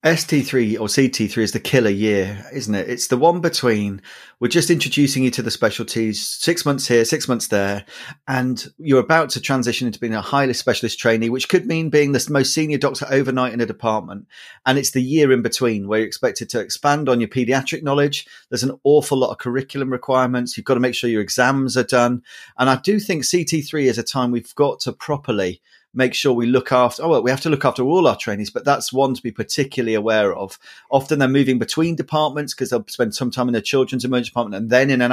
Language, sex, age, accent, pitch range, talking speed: English, male, 30-49, British, 120-145 Hz, 230 wpm